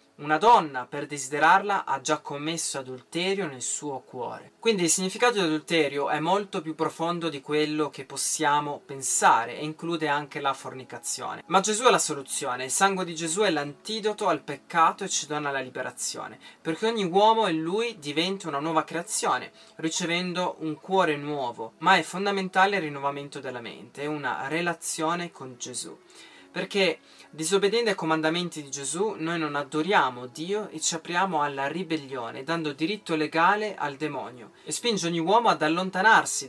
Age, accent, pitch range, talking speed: 20-39, native, 145-185 Hz, 160 wpm